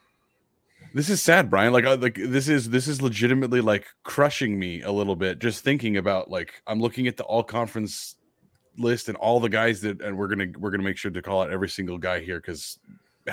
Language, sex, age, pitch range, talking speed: English, male, 30-49, 100-120 Hz, 220 wpm